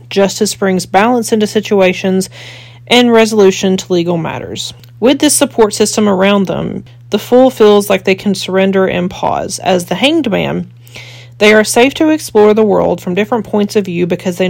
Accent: American